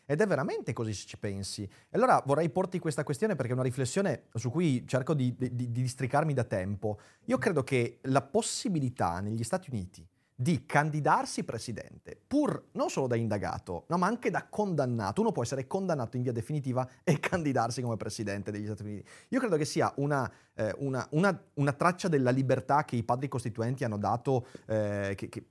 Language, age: Italian, 30-49